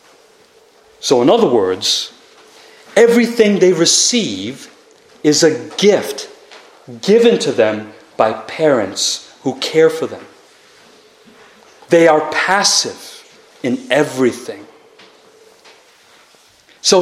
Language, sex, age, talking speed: English, male, 40-59, 90 wpm